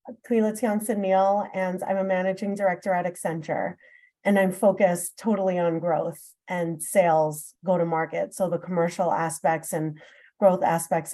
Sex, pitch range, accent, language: female, 180-210 Hz, American, English